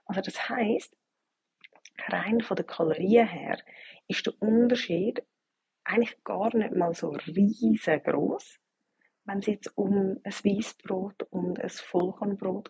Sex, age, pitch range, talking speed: female, 30-49, 190-240 Hz, 125 wpm